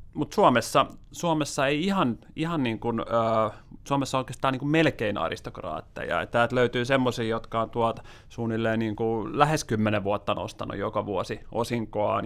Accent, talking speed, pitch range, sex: native, 145 wpm, 110-130 Hz, male